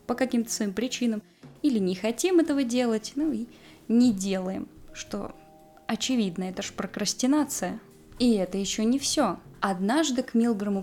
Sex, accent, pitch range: female, native, 200-265 Hz